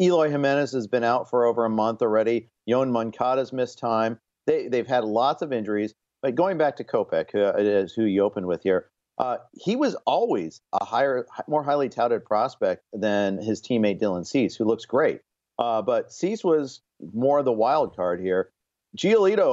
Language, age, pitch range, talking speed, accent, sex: English, 50-69, 105-135 Hz, 180 wpm, American, male